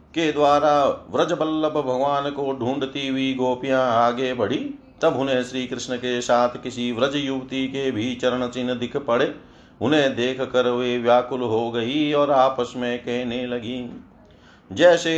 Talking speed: 150 wpm